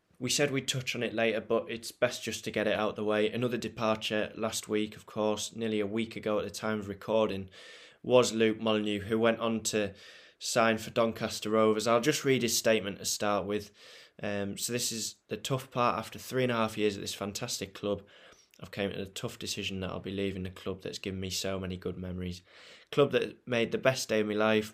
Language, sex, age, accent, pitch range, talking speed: English, male, 20-39, British, 100-110 Hz, 235 wpm